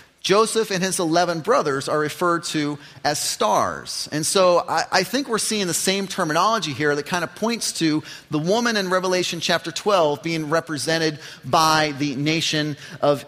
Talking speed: 170 wpm